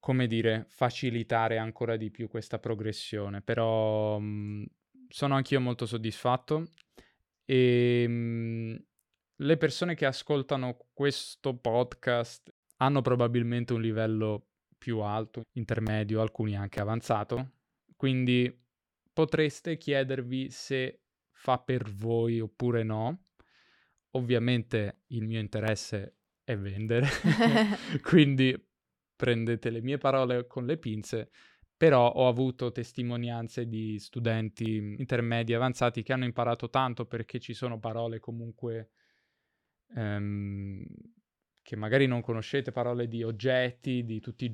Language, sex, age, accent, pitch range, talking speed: Italian, male, 20-39, native, 115-130 Hz, 110 wpm